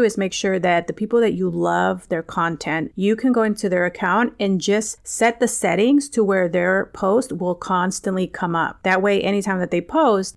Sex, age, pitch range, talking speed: female, 30-49, 180-215 Hz, 210 wpm